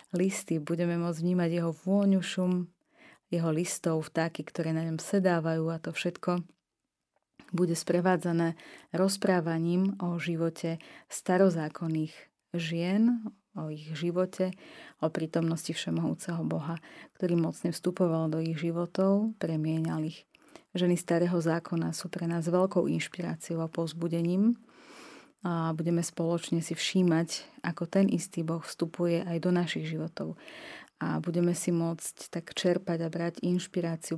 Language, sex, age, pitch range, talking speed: Slovak, female, 30-49, 165-180 Hz, 125 wpm